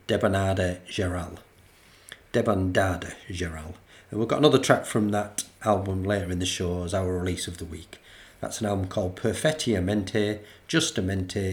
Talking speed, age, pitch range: 145 wpm, 40-59, 90-115 Hz